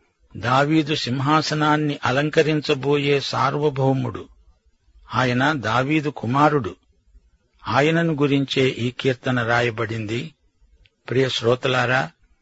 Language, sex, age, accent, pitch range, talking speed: Telugu, male, 50-69, native, 125-150 Hz, 65 wpm